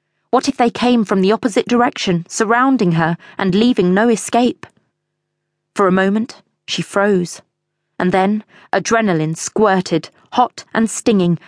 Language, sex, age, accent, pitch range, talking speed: English, female, 30-49, British, 170-210 Hz, 135 wpm